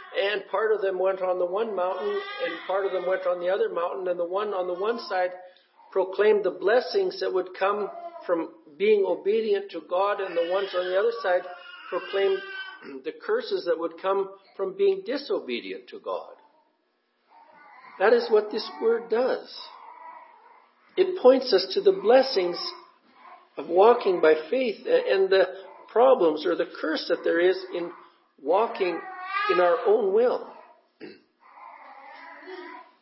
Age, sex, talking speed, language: 50-69, male, 155 wpm, English